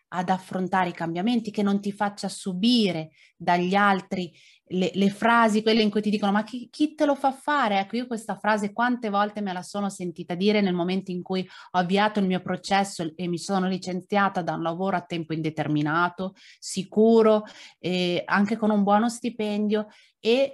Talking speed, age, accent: 185 wpm, 30-49, native